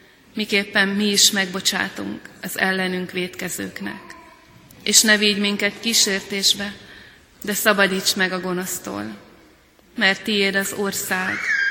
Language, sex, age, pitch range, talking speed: Hungarian, female, 30-49, 185-215 Hz, 100 wpm